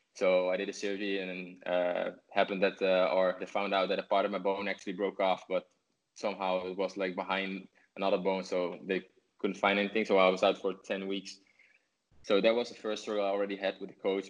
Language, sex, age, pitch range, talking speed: English, male, 20-39, 95-100 Hz, 230 wpm